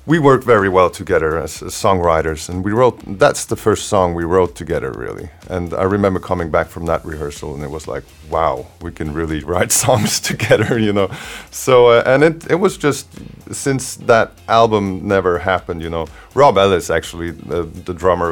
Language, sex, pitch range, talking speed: Greek, male, 80-100 Hz, 195 wpm